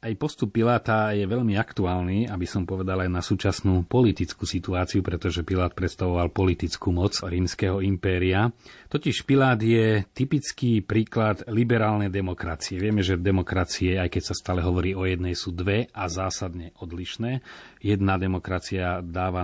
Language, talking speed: Slovak, 140 wpm